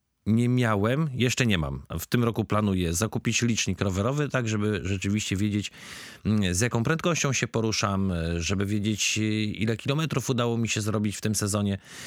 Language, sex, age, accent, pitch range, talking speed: Polish, male, 40-59, native, 105-130 Hz, 160 wpm